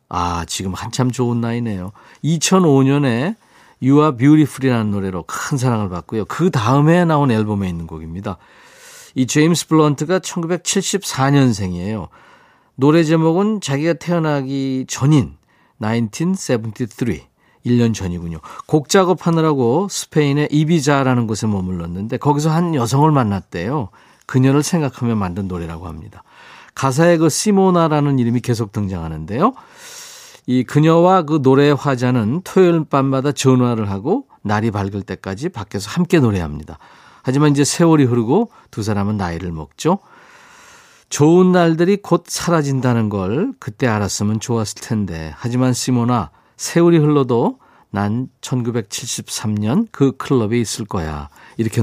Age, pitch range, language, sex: 40-59, 105-155 Hz, Korean, male